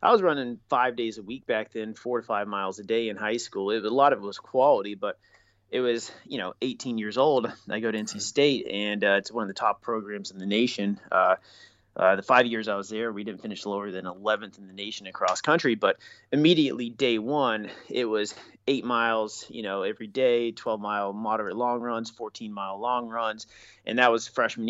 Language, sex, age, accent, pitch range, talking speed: English, male, 30-49, American, 105-130 Hz, 220 wpm